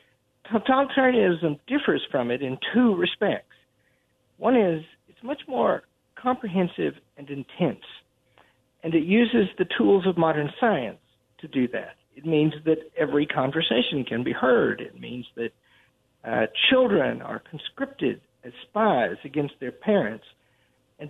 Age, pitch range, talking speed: 50-69, 130-215 Hz, 135 wpm